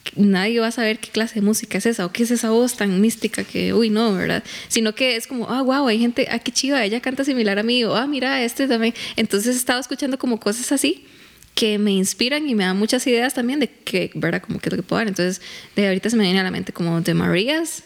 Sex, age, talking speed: female, 10-29, 270 wpm